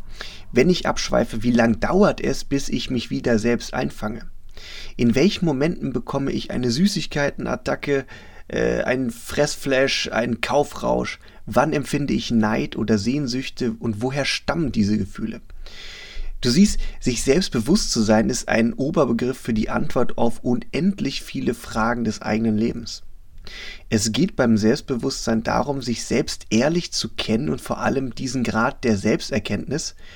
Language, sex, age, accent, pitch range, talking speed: German, male, 30-49, German, 110-140 Hz, 145 wpm